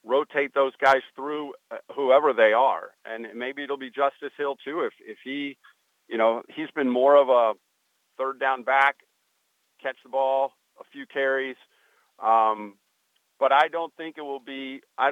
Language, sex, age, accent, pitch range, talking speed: English, male, 50-69, American, 125-145 Hz, 165 wpm